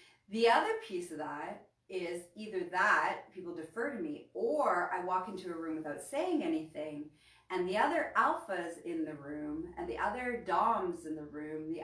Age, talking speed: 30-49, 180 wpm